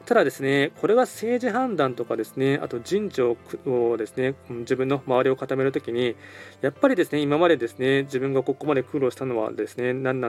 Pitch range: 125-155 Hz